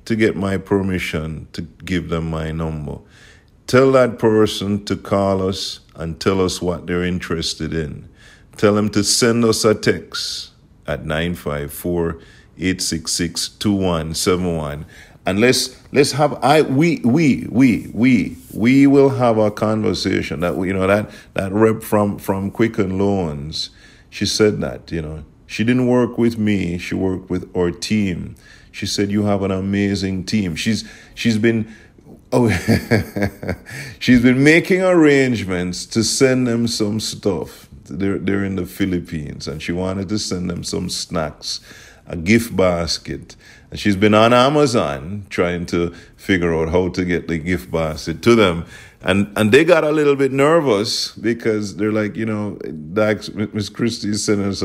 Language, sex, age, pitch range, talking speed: English, male, 50-69, 90-110 Hz, 155 wpm